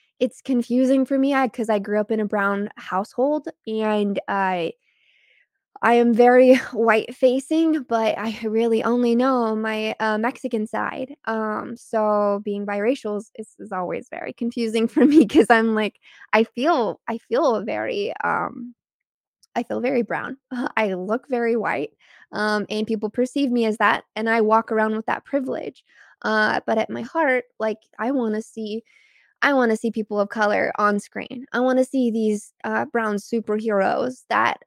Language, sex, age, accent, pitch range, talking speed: English, female, 20-39, American, 210-250 Hz, 170 wpm